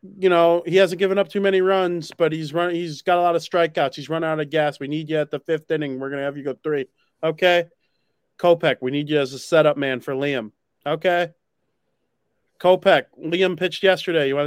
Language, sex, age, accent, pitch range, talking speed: English, male, 30-49, American, 135-165 Hz, 230 wpm